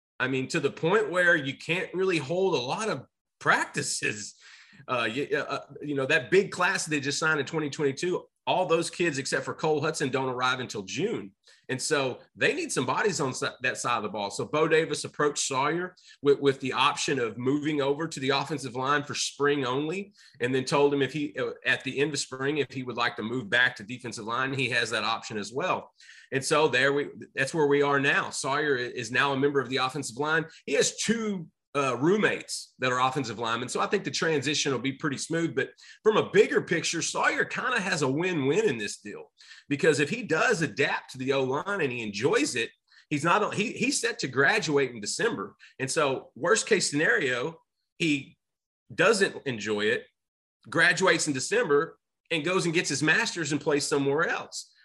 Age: 30-49